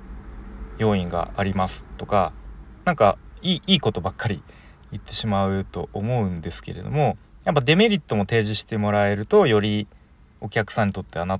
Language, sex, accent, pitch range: Japanese, male, native, 85-125 Hz